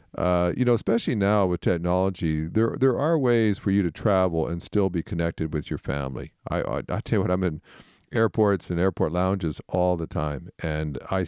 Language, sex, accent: English, male, American